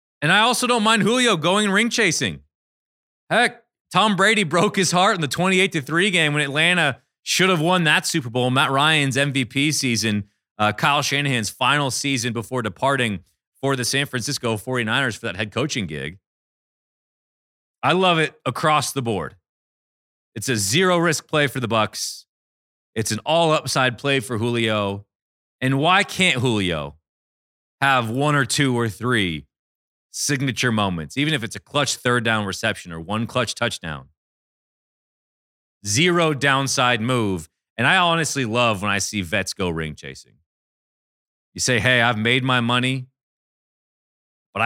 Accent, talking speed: American, 150 wpm